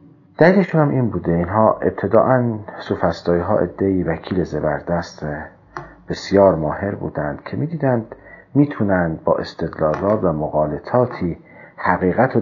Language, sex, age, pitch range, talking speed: Persian, male, 40-59, 85-130 Hz, 100 wpm